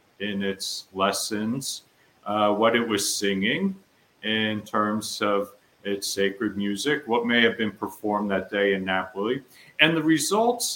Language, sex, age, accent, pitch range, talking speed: English, male, 50-69, American, 100-135 Hz, 145 wpm